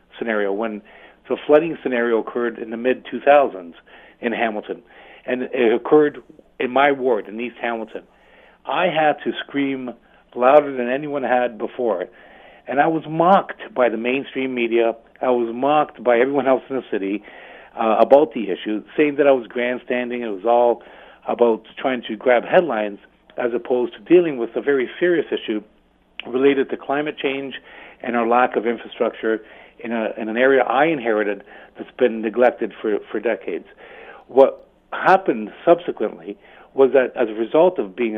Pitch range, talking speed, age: 120-160 Hz, 165 wpm, 50-69